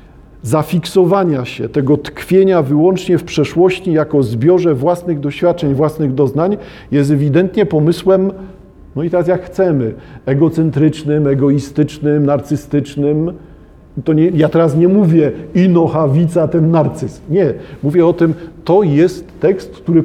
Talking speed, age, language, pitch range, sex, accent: 125 wpm, 40-59, Polish, 150-190 Hz, male, native